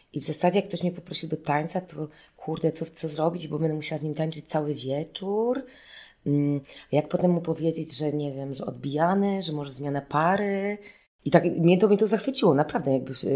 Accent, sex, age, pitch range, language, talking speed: native, female, 20-39, 145-180 Hz, Polish, 200 wpm